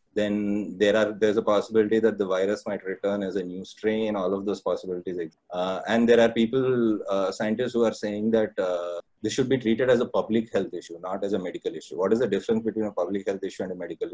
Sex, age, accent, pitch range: male, 30-49, Indian, 100-120 Hz